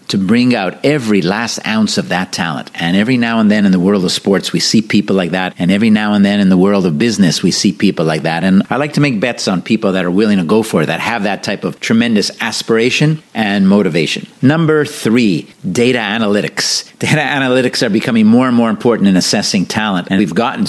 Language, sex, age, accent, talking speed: English, male, 50-69, American, 235 wpm